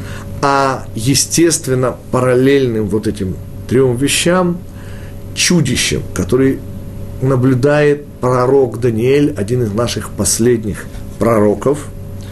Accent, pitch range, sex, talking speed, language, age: native, 100-130 Hz, male, 85 wpm, Russian, 40-59